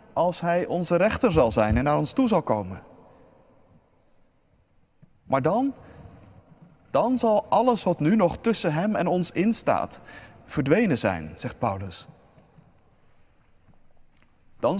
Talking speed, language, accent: 120 wpm, Dutch, Dutch